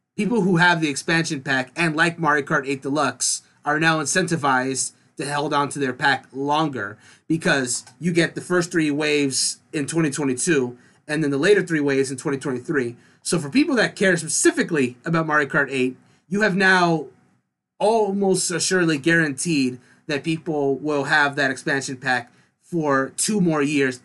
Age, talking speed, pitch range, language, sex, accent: 30-49, 165 wpm, 135-170 Hz, English, male, American